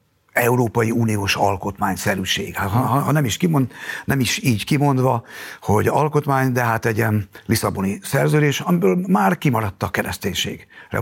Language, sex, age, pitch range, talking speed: Hungarian, male, 60-79, 120-150 Hz, 140 wpm